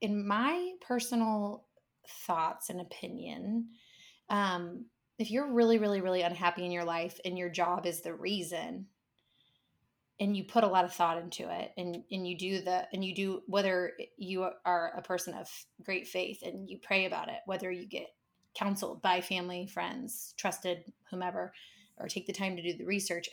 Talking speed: 175 wpm